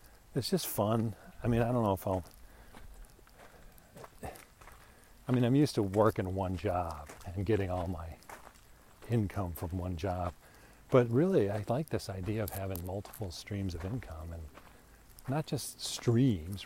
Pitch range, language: 90-115 Hz, English